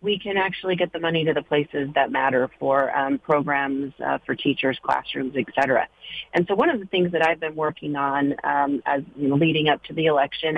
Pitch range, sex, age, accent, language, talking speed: 145-175 Hz, female, 40-59, American, English, 225 wpm